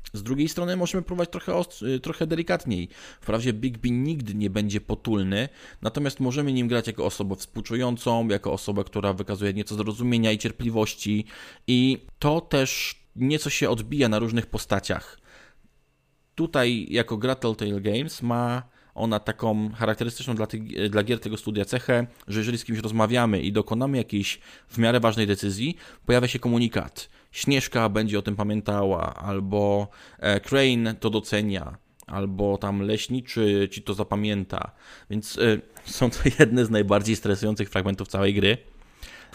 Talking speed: 145 wpm